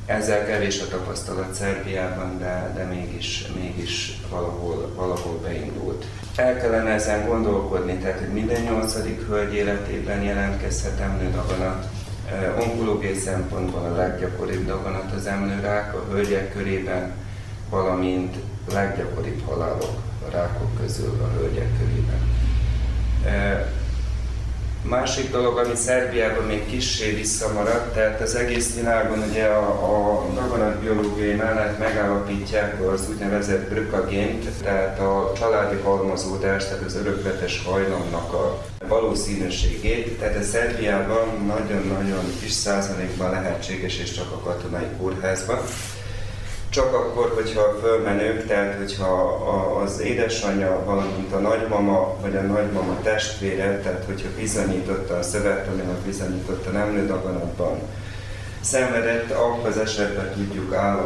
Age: 30-49